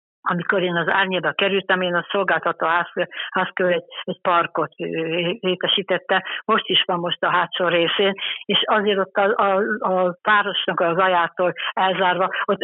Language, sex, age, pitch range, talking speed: Hungarian, female, 60-79, 170-200 Hz, 135 wpm